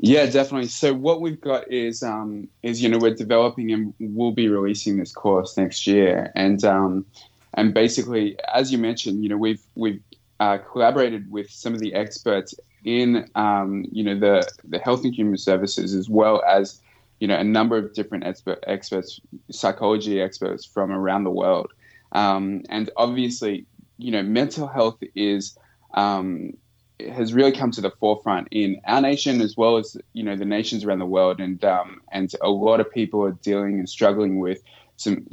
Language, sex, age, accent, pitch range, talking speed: English, male, 20-39, Australian, 100-115 Hz, 180 wpm